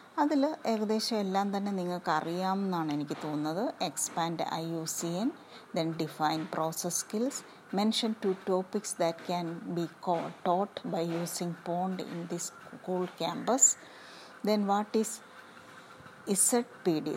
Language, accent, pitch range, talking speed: English, Indian, 165-215 Hz, 100 wpm